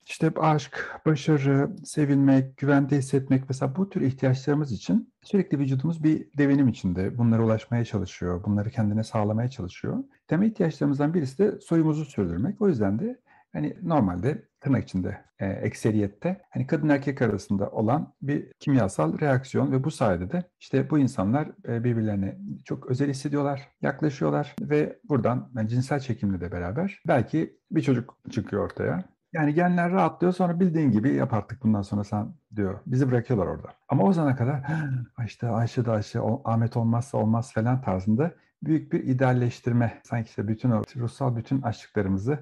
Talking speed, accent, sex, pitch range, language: 155 wpm, native, male, 110-145 Hz, Turkish